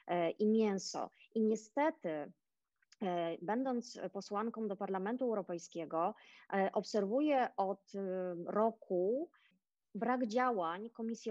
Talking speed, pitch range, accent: 80 wpm, 195-235 Hz, Polish